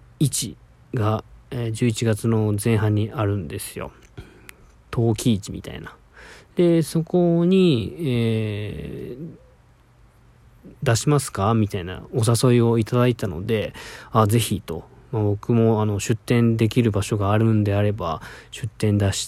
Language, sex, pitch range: Japanese, male, 105-130 Hz